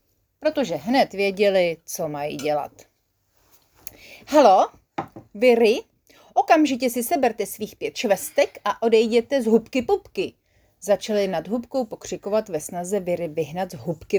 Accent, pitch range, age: native, 175-250 Hz, 30-49